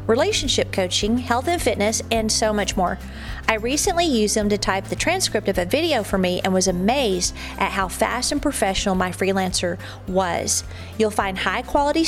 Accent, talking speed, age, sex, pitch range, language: American, 180 wpm, 40-59, female, 195-245 Hz, English